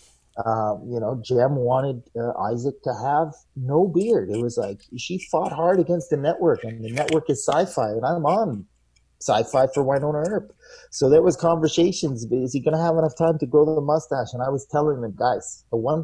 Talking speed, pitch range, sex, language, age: 210 wpm, 110-160 Hz, male, English, 30-49